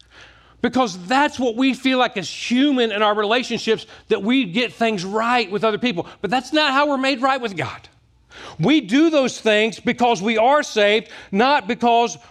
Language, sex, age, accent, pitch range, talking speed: English, male, 40-59, American, 215-270 Hz, 185 wpm